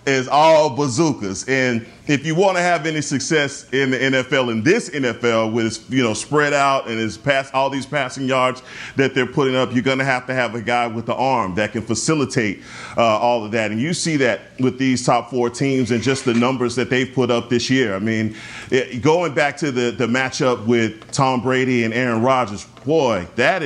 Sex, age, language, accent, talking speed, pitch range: male, 40-59, English, American, 225 wpm, 115-135 Hz